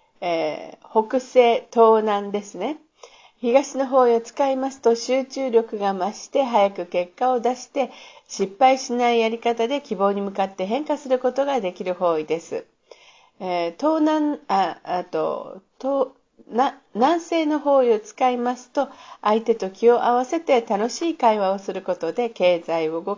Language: Japanese